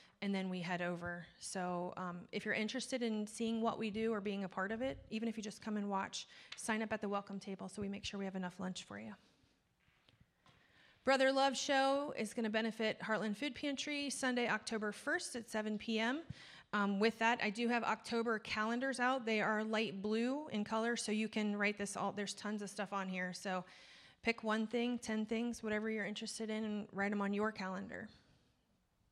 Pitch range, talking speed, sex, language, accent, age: 200-240 Hz, 210 wpm, female, English, American, 30-49